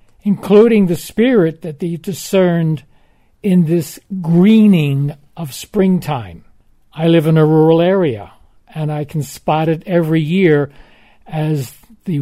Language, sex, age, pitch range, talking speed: Ukrainian, male, 60-79, 150-195 Hz, 130 wpm